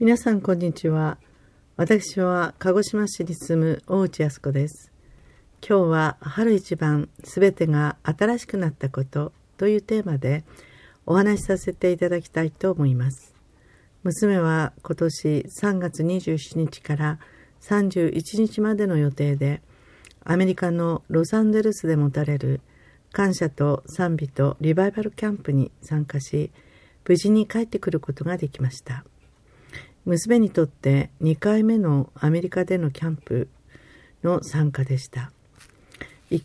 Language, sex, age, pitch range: Japanese, female, 50-69, 145-190 Hz